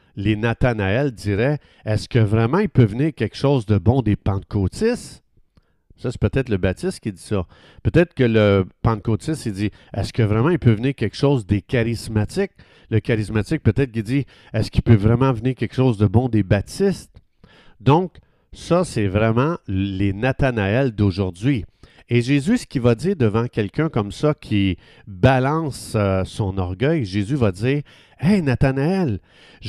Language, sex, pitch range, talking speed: French, male, 105-145 Hz, 180 wpm